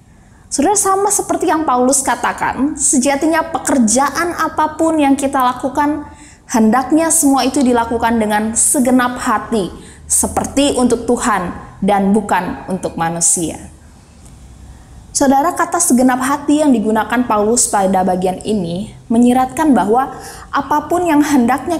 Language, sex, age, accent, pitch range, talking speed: Indonesian, female, 20-39, native, 215-285 Hz, 115 wpm